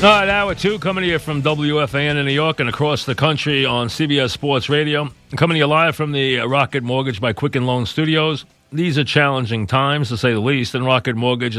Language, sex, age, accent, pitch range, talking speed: English, male, 40-59, American, 115-140 Hz, 225 wpm